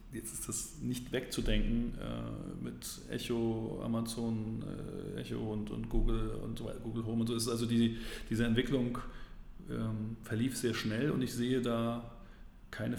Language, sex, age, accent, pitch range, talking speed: German, male, 40-59, German, 110-120 Hz, 160 wpm